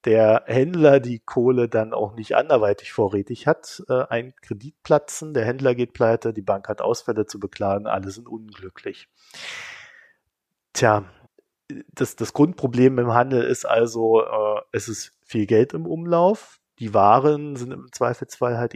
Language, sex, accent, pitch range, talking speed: German, male, German, 110-130 Hz, 145 wpm